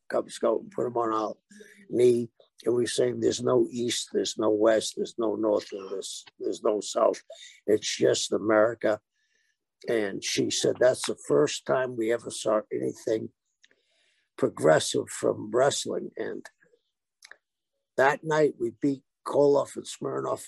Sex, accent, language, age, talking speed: male, American, English, 60-79, 145 wpm